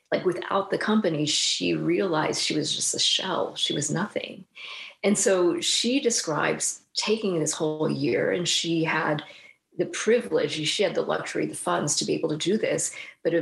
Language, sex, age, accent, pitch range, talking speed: English, female, 40-59, American, 165-245 Hz, 180 wpm